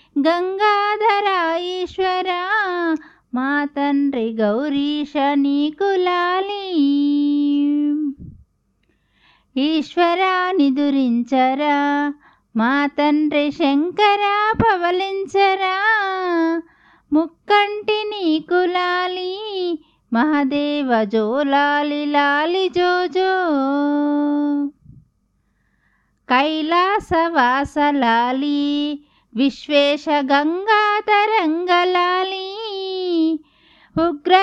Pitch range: 290-370 Hz